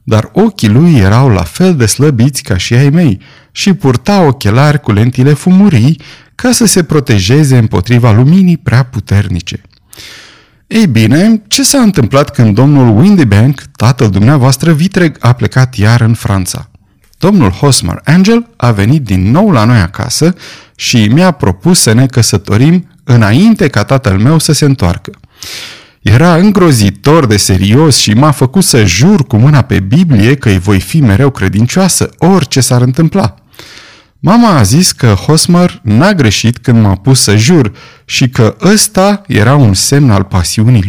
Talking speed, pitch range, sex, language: 155 wpm, 110-165 Hz, male, Romanian